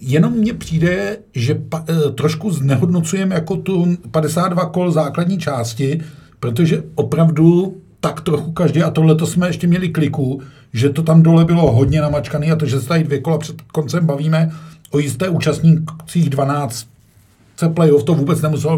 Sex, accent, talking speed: male, native, 155 wpm